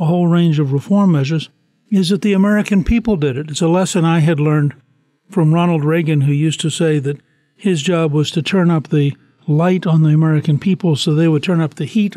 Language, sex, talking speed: English, male, 225 wpm